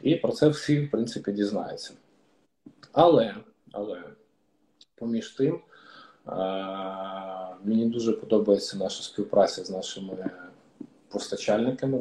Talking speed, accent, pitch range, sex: 95 wpm, native, 100-115 Hz, male